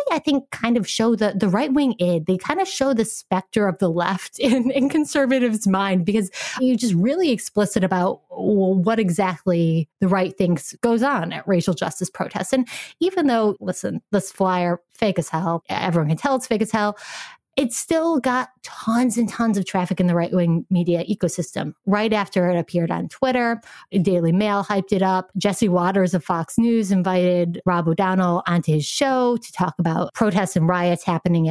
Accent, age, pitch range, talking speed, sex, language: American, 30-49, 175-230 Hz, 185 wpm, female, English